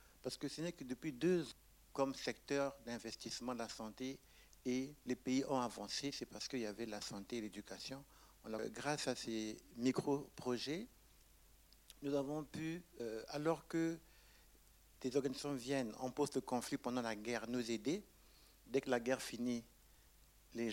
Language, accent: French, French